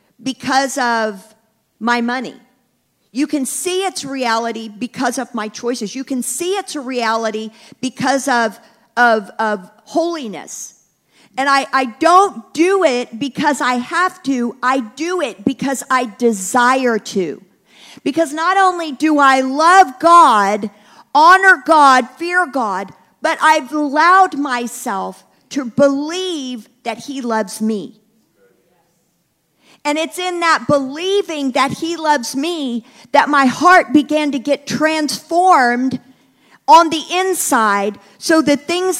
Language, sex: English, female